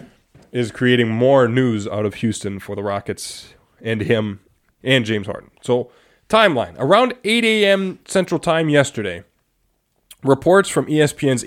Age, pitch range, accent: 20-39, 110-135 Hz, American